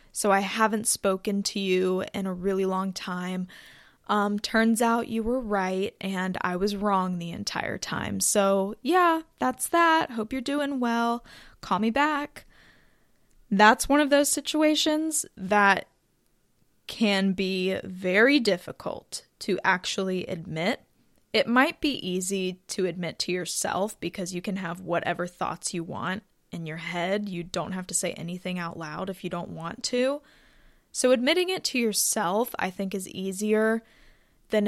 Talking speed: 155 wpm